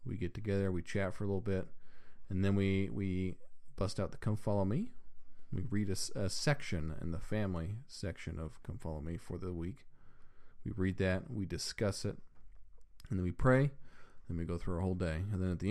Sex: male